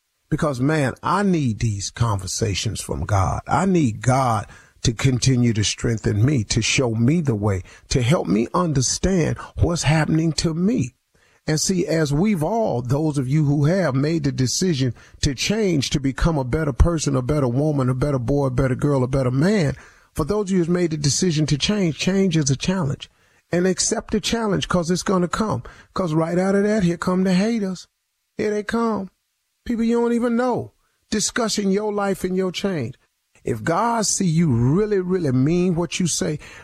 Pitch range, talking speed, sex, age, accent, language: 135-200 Hz, 195 wpm, male, 50-69, American, English